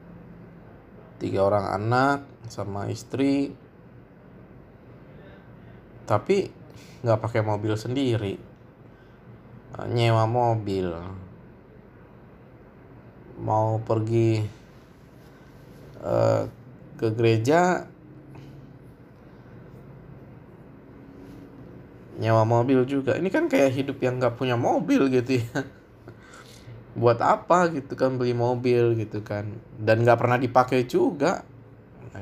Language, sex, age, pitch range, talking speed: Indonesian, male, 20-39, 105-130 Hz, 80 wpm